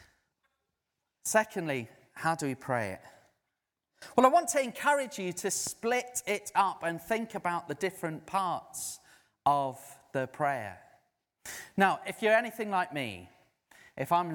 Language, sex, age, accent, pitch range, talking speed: English, male, 30-49, British, 125-185 Hz, 140 wpm